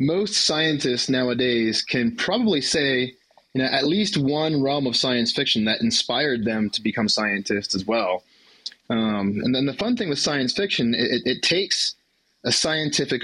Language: English